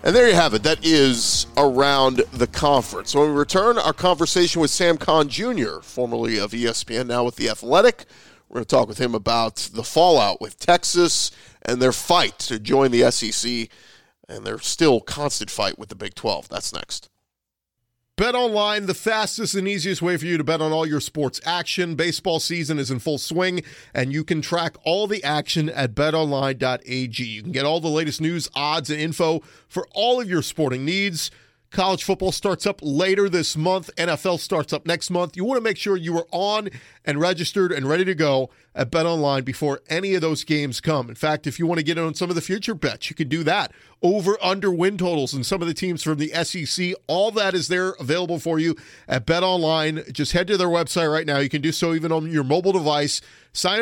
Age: 40-59